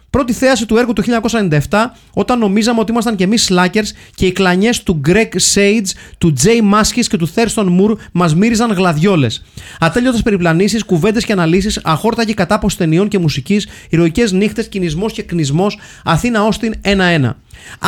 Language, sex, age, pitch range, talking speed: Greek, male, 30-49, 160-215 Hz, 160 wpm